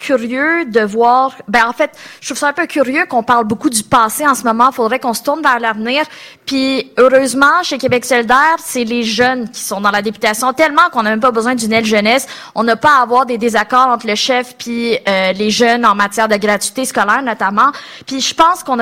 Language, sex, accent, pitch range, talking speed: French, female, Canadian, 215-260 Hz, 230 wpm